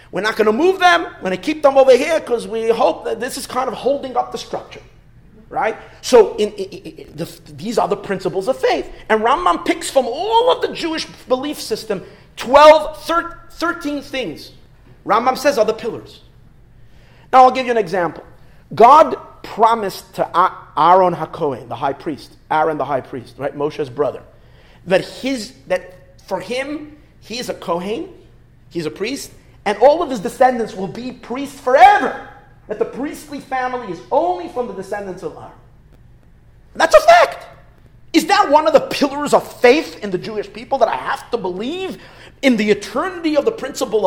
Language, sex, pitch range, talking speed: English, male, 190-305 Hz, 185 wpm